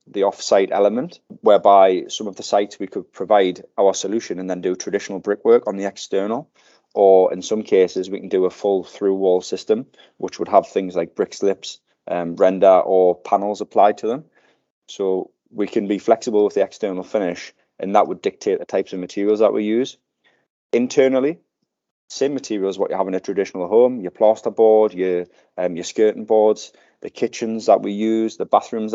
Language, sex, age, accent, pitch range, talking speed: English, male, 20-39, British, 95-110 Hz, 195 wpm